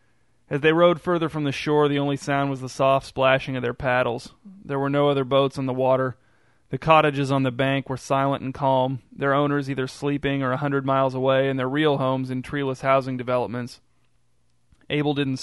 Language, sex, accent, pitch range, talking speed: English, male, American, 130-145 Hz, 205 wpm